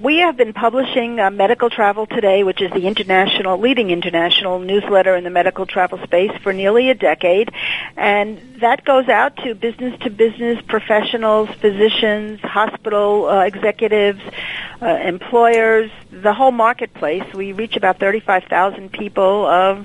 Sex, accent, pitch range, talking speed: female, American, 185-230 Hz, 140 wpm